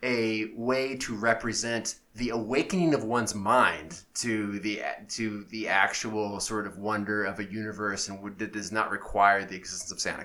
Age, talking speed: 30-49, 175 wpm